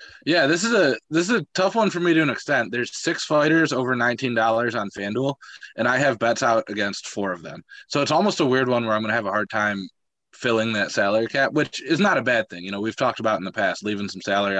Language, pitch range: English, 100-130 Hz